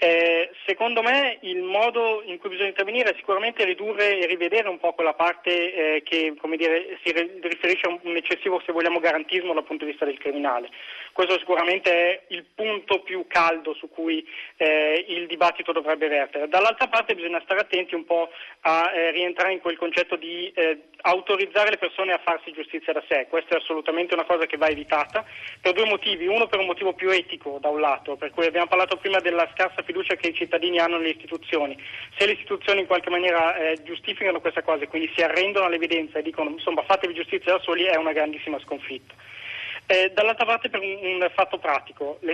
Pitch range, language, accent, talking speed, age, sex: 165-190 Hz, Italian, native, 195 wpm, 30-49, male